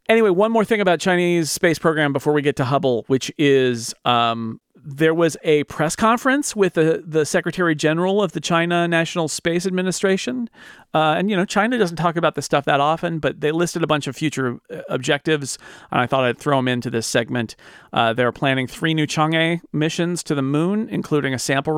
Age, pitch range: 40-59, 135-170 Hz